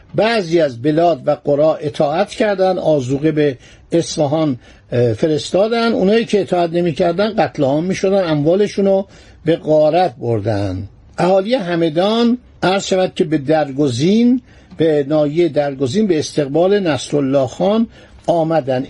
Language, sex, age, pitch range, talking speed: Persian, male, 60-79, 150-195 Hz, 120 wpm